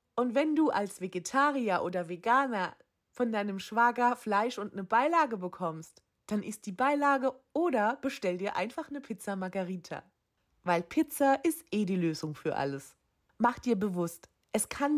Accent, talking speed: German, 155 wpm